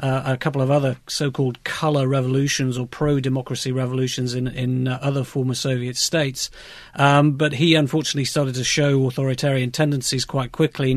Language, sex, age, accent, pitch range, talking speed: English, male, 40-59, British, 130-150 Hz, 165 wpm